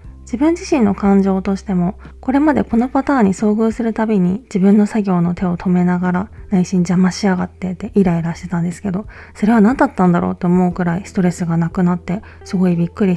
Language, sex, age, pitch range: Japanese, female, 20-39, 180-220 Hz